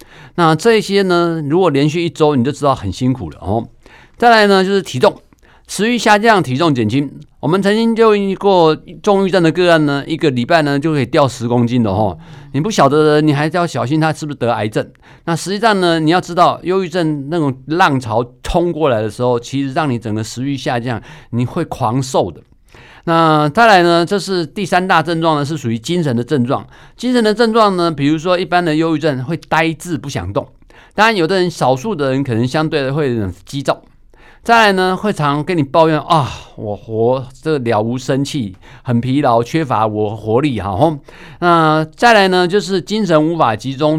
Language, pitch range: Chinese, 130-175 Hz